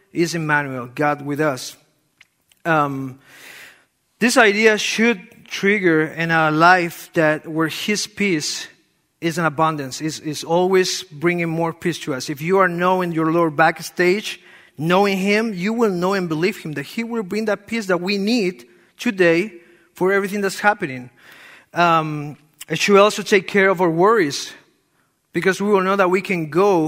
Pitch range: 165-225 Hz